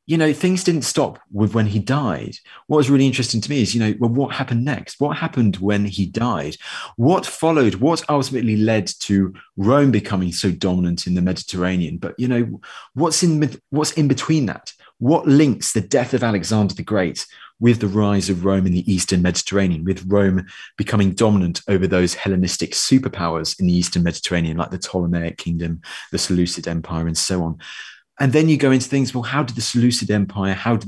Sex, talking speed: male, 195 wpm